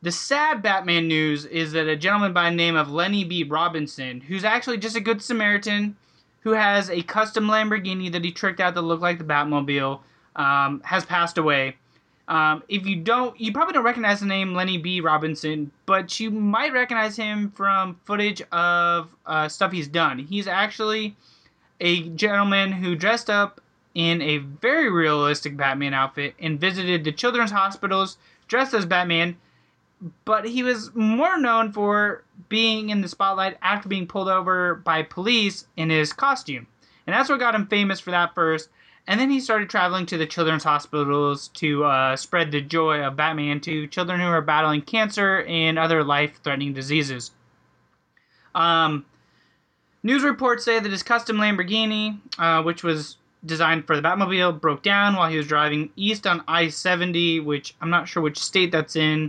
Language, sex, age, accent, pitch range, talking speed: English, male, 20-39, American, 155-210 Hz, 175 wpm